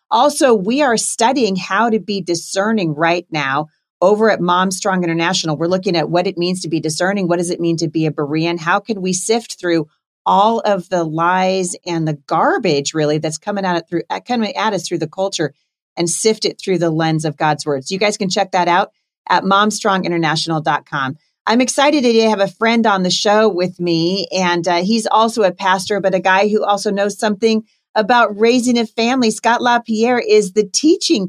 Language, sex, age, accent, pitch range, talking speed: English, female, 40-59, American, 170-215 Hz, 195 wpm